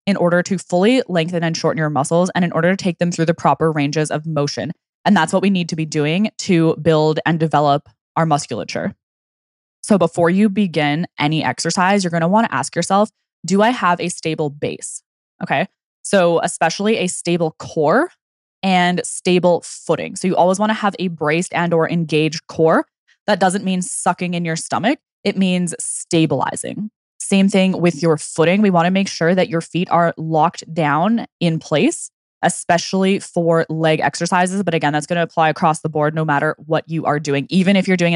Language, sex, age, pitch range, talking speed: English, female, 10-29, 155-180 Hz, 195 wpm